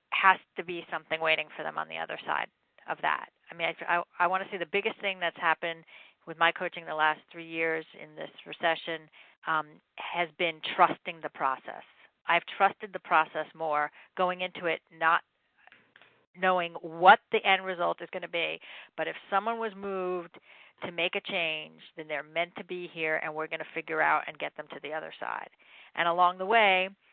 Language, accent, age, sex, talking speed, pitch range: English, American, 40-59, female, 205 wpm, 160-180 Hz